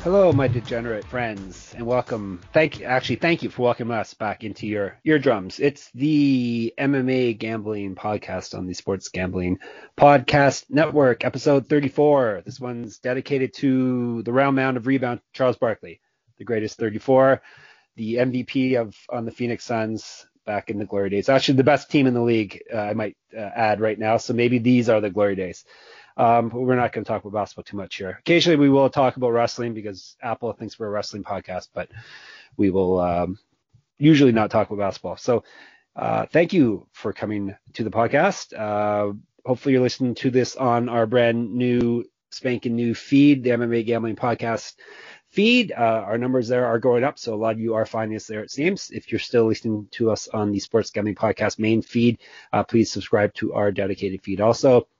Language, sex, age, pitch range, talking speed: English, male, 30-49, 105-130 Hz, 195 wpm